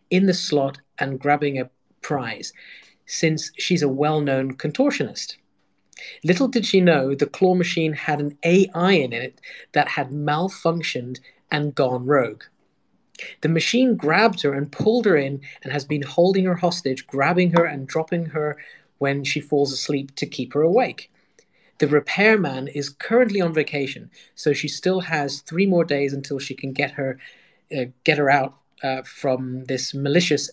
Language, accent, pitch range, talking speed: English, British, 145-180 Hz, 165 wpm